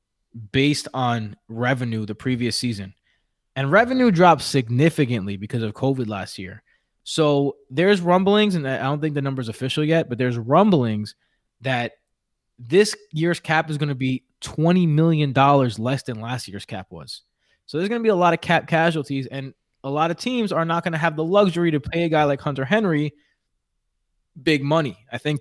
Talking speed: 185 wpm